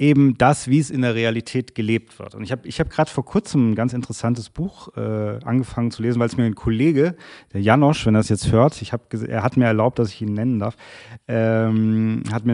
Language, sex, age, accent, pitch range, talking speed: German, male, 30-49, German, 110-135 Hz, 245 wpm